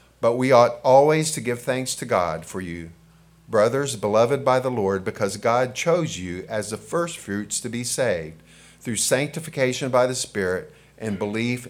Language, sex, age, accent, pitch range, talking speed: English, male, 50-69, American, 100-125 Hz, 170 wpm